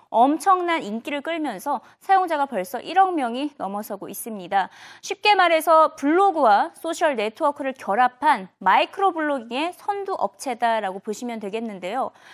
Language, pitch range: Korean, 240-365 Hz